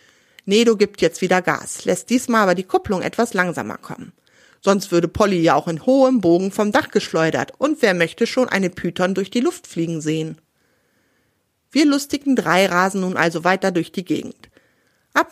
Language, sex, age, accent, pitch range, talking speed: German, female, 40-59, German, 180-255 Hz, 180 wpm